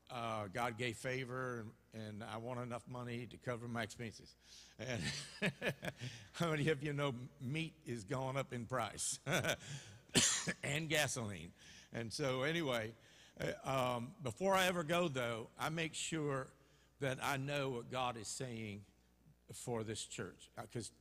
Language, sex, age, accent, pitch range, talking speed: English, male, 60-79, American, 115-150 Hz, 150 wpm